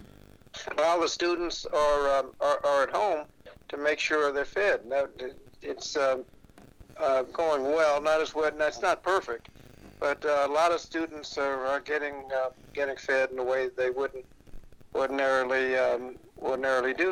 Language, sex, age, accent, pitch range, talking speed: English, male, 60-79, American, 135-175 Hz, 170 wpm